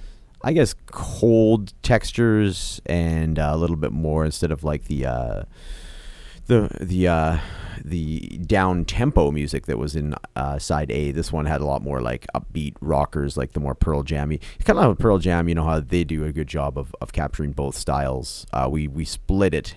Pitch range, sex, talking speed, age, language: 70-85 Hz, male, 195 wpm, 30-49, English